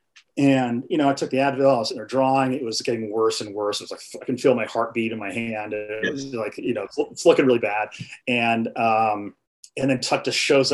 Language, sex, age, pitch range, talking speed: English, male, 40-59, 115-145 Hz, 250 wpm